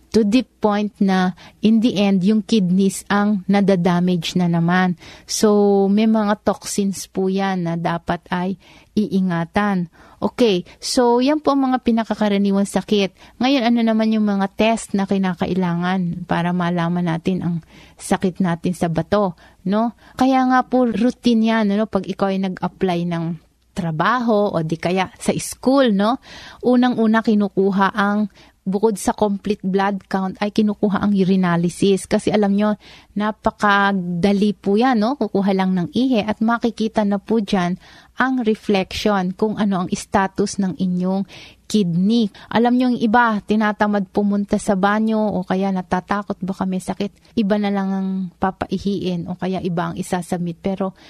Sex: female